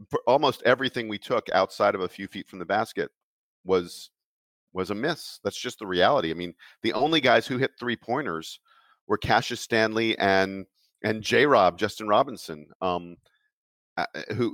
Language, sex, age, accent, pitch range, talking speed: English, male, 40-59, American, 90-110 Hz, 165 wpm